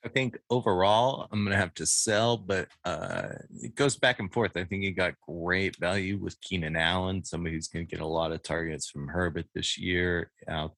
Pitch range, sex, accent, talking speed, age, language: 85-100 Hz, male, American, 215 wpm, 30-49, English